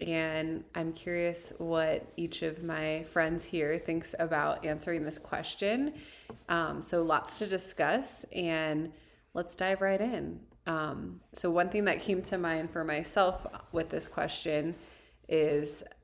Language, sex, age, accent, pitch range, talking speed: English, female, 20-39, American, 155-185 Hz, 140 wpm